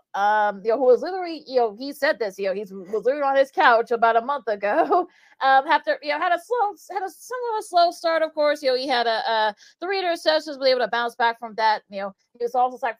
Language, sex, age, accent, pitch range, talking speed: English, female, 30-49, American, 220-295 Hz, 275 wpm